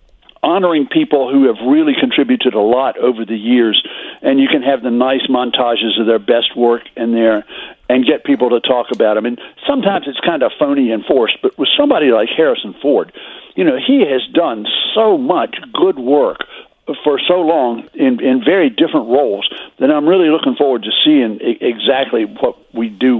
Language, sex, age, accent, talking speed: English, male, 60-79, American, 190 wpm